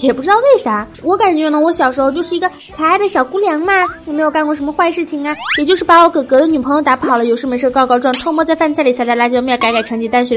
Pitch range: 255-355 Hz